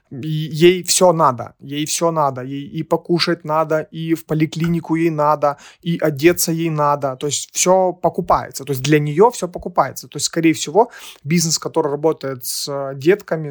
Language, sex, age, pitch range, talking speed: Russian, male, 30-49, 145-175 Hz, 175 wpm